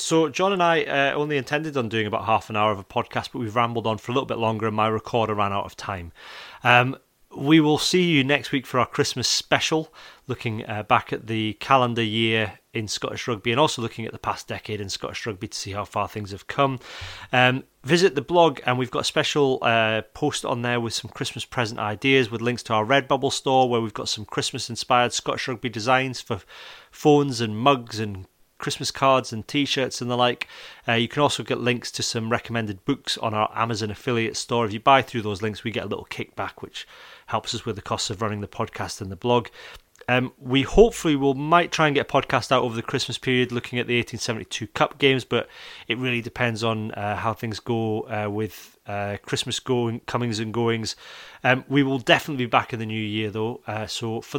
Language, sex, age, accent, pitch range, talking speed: English, male, 30-49, British, 110-135 Hz, 225 wpm